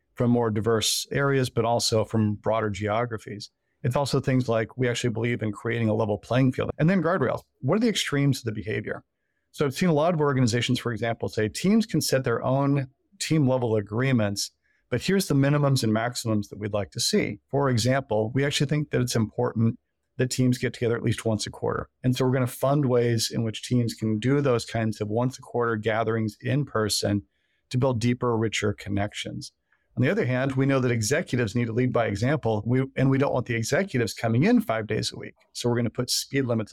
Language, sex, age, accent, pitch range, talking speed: English, male, 50-69, American, 110-130 Hz, 220 wpm